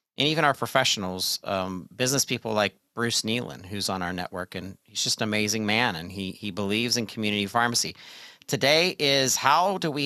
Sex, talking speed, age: male, 190 wpm, 40-59